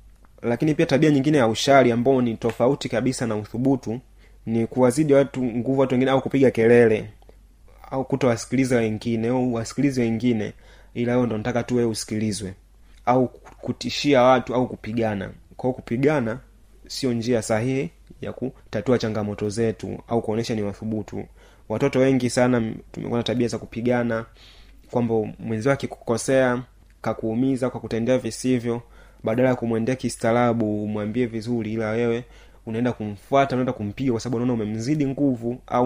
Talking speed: 140 wpm